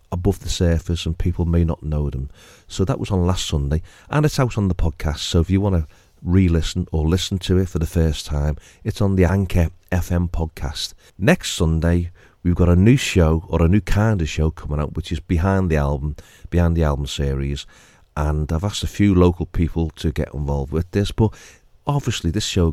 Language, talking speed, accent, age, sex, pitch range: English, 215 wpm, British, 40-59, male, 75-95 Hz